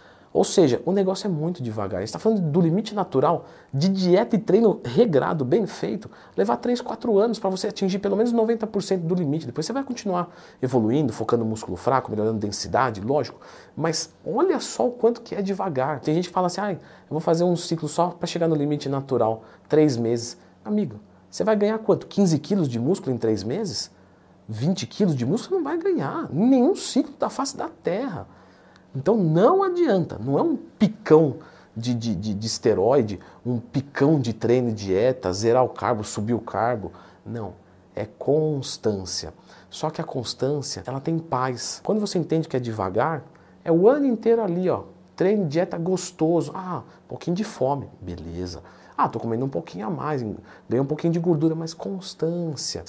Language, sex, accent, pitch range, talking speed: Portuguese, male, Brazilian, 115-195 Hz, 190 wpm